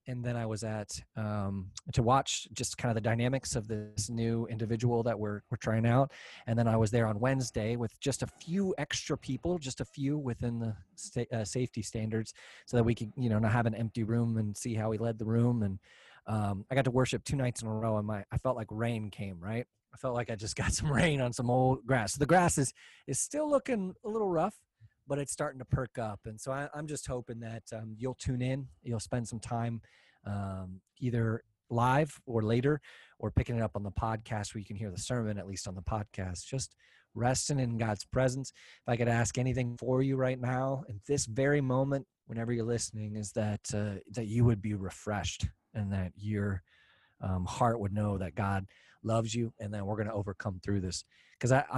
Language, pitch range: English, 105-130 Hz